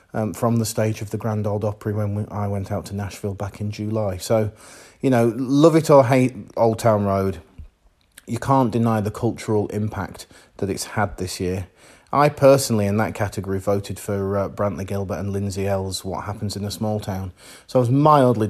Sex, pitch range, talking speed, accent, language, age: male, 100-125 Hz, 205 wpm, British, English, 30-49